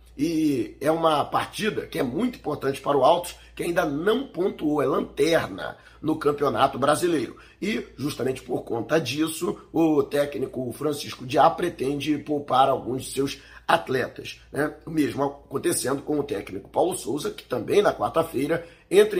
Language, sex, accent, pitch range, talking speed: Portuguese, male, Brazilian, 145-195 Hz, 155 wpm